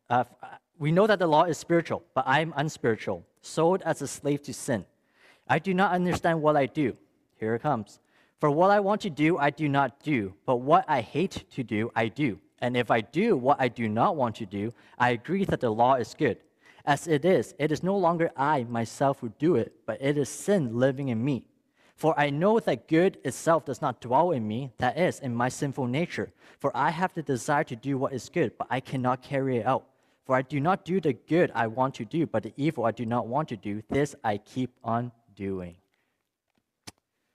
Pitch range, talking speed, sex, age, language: 115-145 Hz, 225 wpm, male, 20-39, English